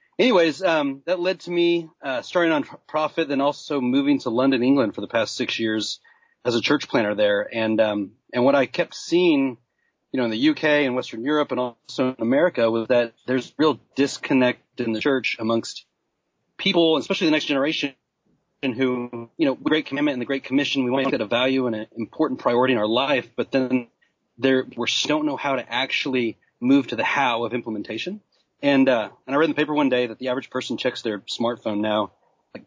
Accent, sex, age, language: American, male, 30-49, English